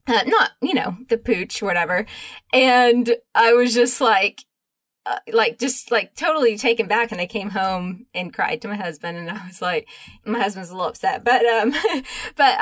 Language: English